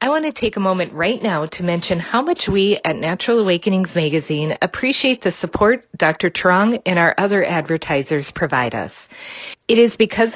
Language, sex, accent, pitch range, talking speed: English, female, American, 165-220 Hz, 180 wpm